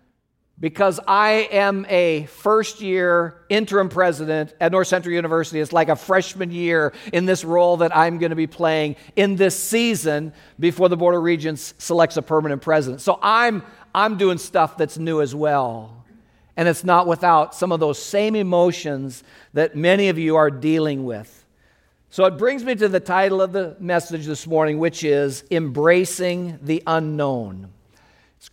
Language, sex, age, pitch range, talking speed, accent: English, male, 50-69, 155-210 Hz, 170 wpm, American